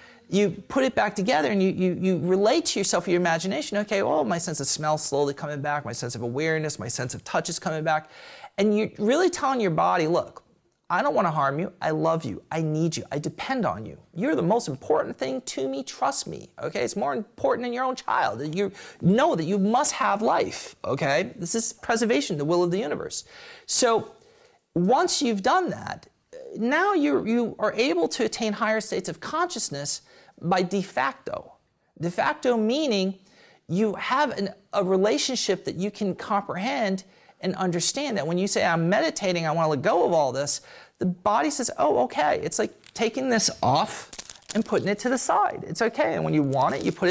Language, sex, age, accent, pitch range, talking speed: English, male, 40-59, American, 170-235 Hz, 205 wpm